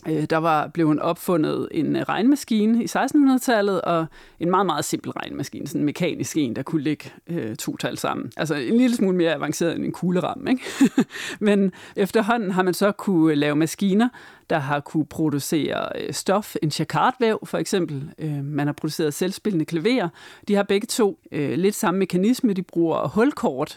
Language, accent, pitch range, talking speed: Danish, native, 165-220 Hz, 180 wpm